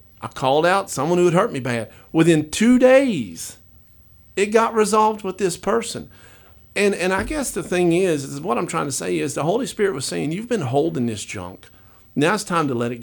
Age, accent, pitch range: 50-69, American, 125-185 Hz